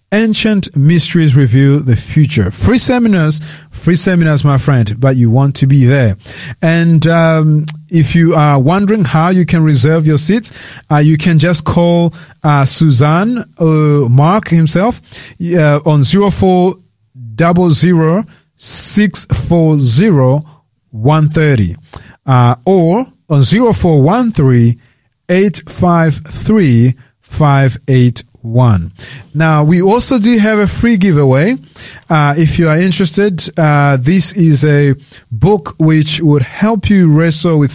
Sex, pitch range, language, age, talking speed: male, 135-175 Hz, English, 30-49, 140 wpm